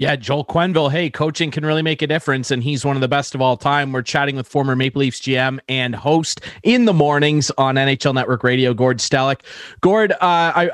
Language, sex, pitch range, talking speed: English, male, 140-175 Hz, 225 wpm